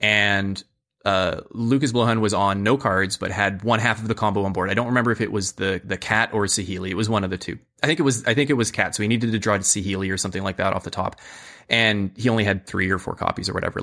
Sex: male